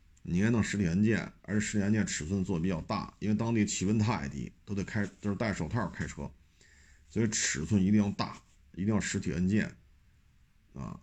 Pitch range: 85-110 Hz